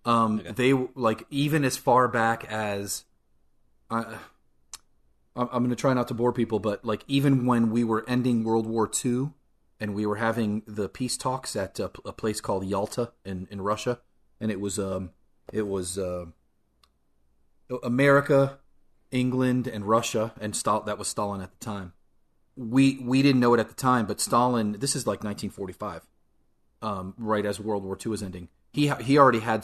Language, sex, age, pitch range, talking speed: English, male, 30-49, 100-125 Hz, 180 wpm